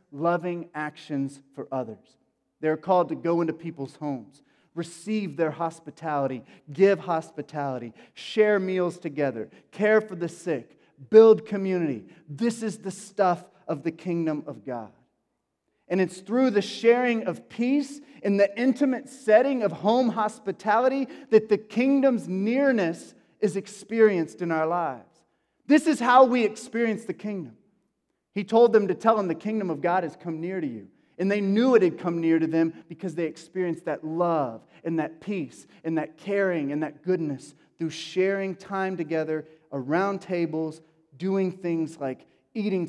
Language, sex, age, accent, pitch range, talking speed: English, male, 30-49, American, 160-210 Hz, 155 wpm